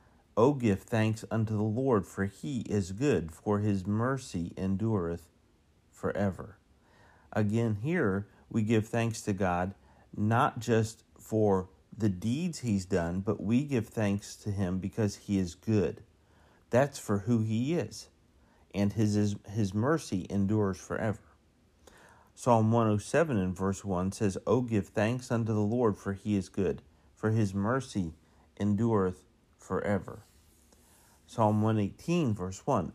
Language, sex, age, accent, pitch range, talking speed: English, male, 40-59, American, 95-110 Hz, 135 wpm